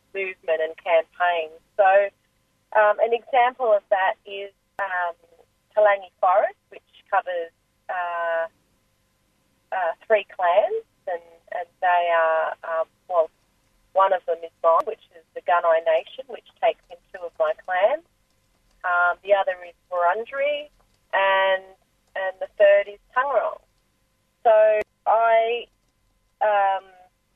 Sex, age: female, 30-49